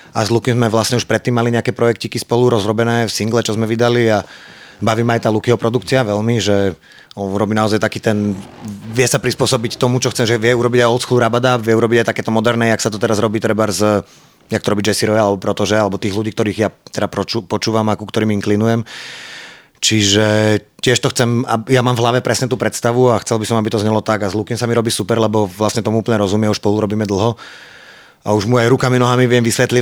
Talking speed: 230 wpm